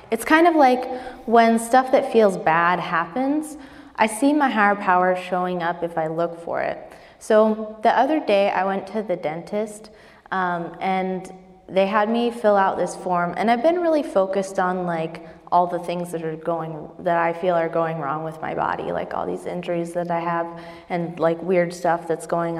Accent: American